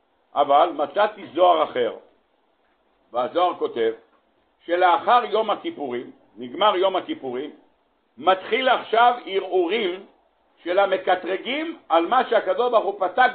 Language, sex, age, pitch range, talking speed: Hebrew, male, 60-79, 160-220 Hz, 100 wpm